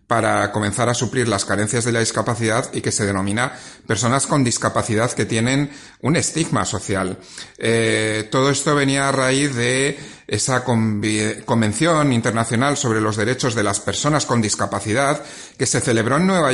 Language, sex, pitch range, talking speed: Spanish, male, 115-145 Hz, 160 wpm